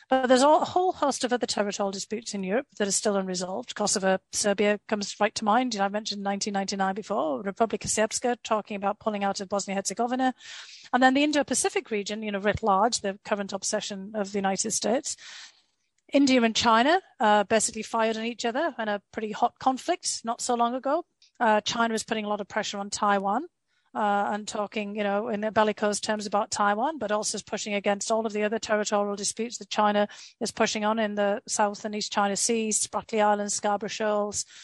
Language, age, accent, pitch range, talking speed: English, 40-59, British, 205-245 Hz, 200 wpm